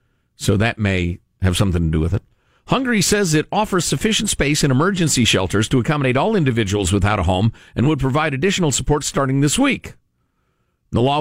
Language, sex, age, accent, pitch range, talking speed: English, male, 50-69, American, 100-150 Hz, 185 wpm